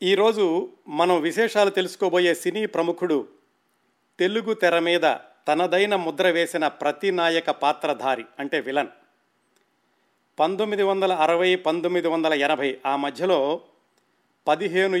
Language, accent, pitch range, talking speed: Telugu, native, 160-195 Hz, 105 wpm